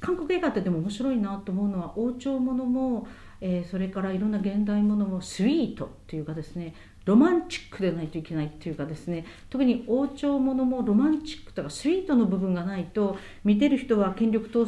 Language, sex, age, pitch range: Japanese, female, 50-69, 180-255 Hz